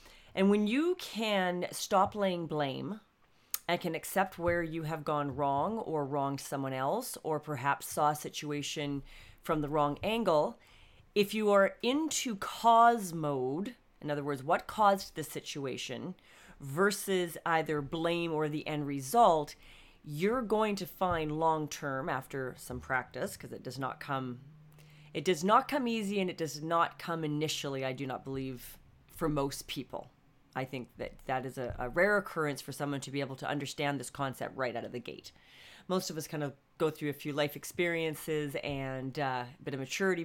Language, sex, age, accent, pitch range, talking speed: English, female, 40-59, American, 140-185 Hz, 175 wpm